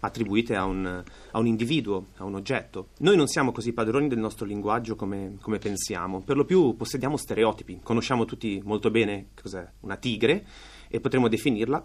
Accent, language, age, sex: native, Italian, 30-49, male